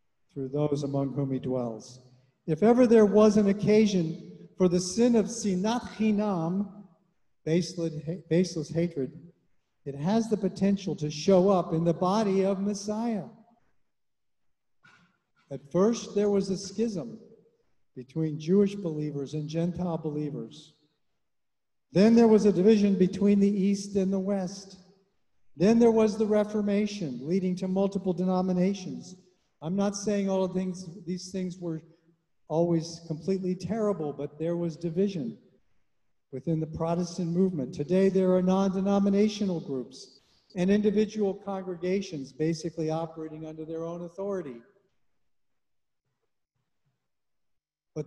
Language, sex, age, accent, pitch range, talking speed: English, male, 50-69, American, 160-200 Hz, 125 wpm